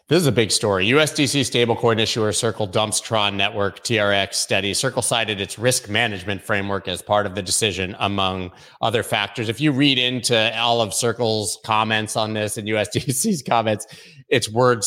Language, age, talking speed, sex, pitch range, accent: English, 30-49, 175 wpm, male, 105-125 Hz, American